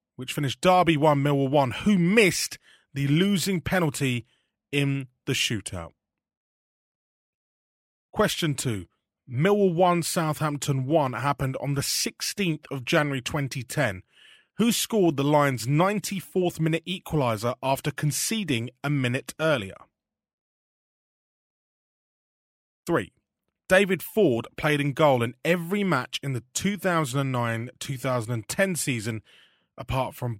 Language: English